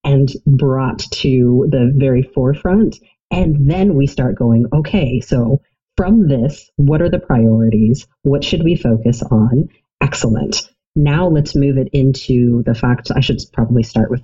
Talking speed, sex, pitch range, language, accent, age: 155 wpm, female, 120-150 Hz, English, American, 40-59